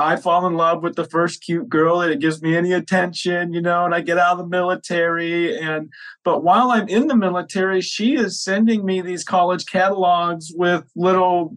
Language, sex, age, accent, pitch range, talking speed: English, male, 30-49, American, 155-190 Hz, 205 wpm